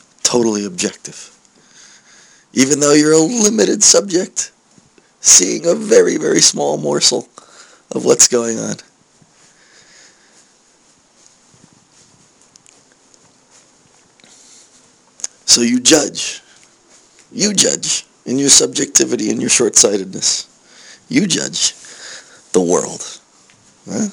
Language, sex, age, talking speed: English, male, 30-49, 80 wpm